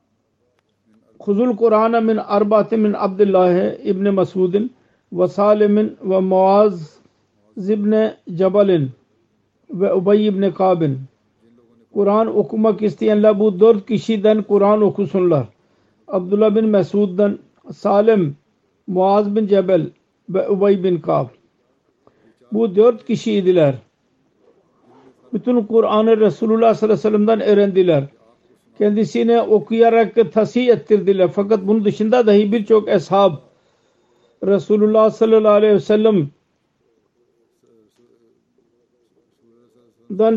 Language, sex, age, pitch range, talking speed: Turkish, male, 50-69, 180-215 Hz, 95 wpm